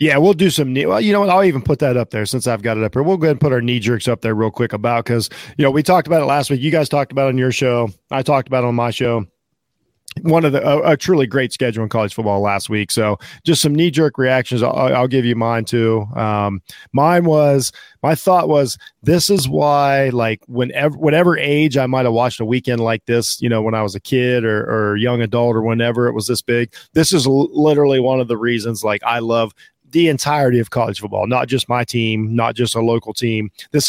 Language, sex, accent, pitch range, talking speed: English, male, American, 115-140 Hz, 260 wpm